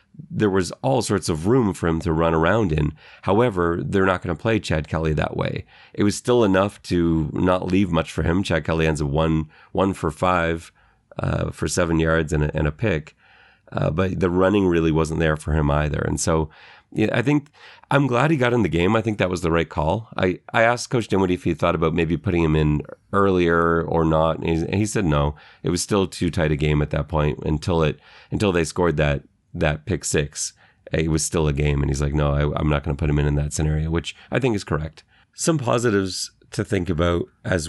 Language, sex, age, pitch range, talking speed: English, male, 30-49, 80-100 Hz, 235 wpm